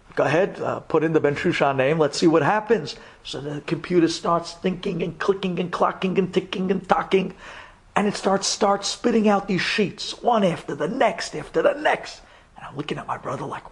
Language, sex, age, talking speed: English, male, 50-69, 210 wpm